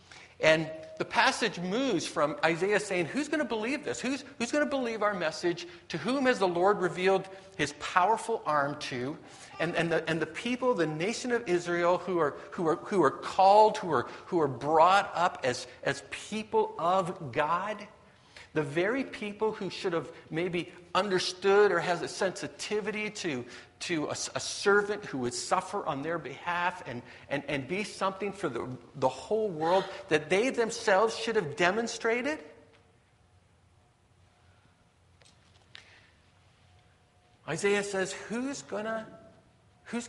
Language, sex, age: English, male, 50-69